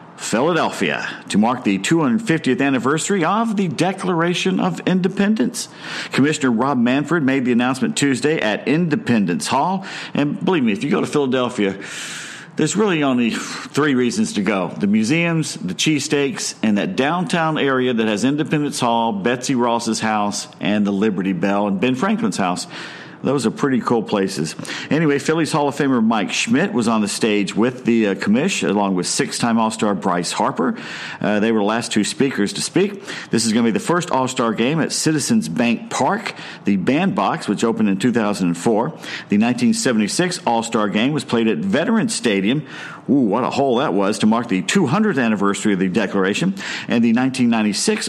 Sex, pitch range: male, 110-175 Hz